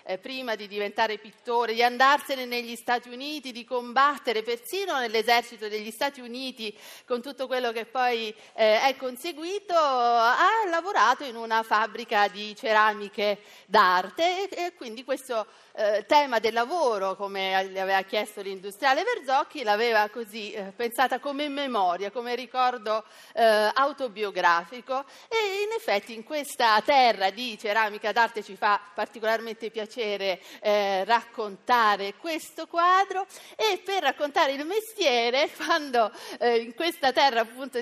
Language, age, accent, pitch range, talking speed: Italian, 40-59, native, 220-300 Hz, 135 wpm